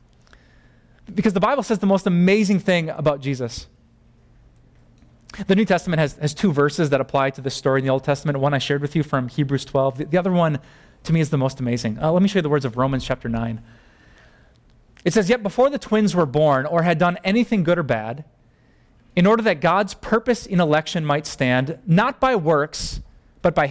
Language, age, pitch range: English, 30-49, 130-185 Hz